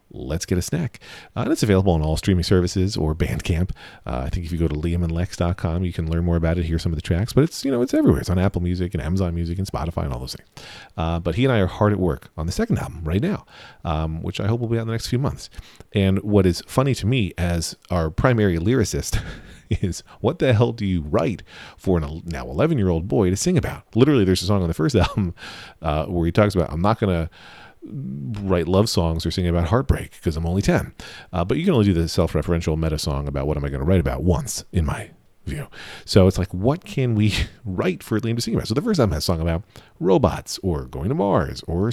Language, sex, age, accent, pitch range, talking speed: English, male, 40-59, American, 80-110 Hz, 260 wpm